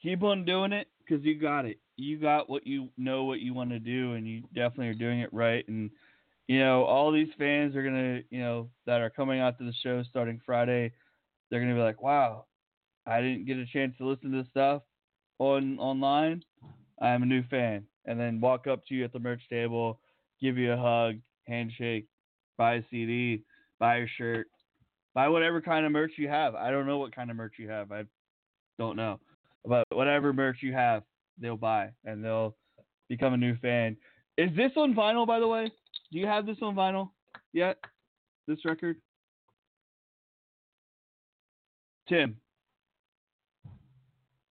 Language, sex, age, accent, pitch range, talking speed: English, male, 20-39, American, 115-150 Hz, 185 wpm